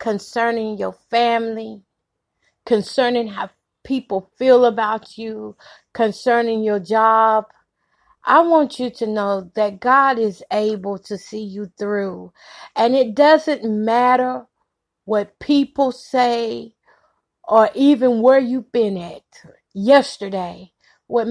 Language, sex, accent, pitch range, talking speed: English, female, American, 215-255 Hz, 115 wpm